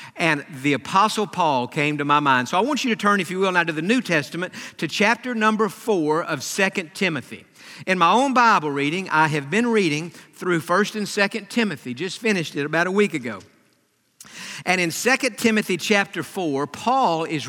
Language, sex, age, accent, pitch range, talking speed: English, male, 50-69, American, 160-225 Hz, 200 wpm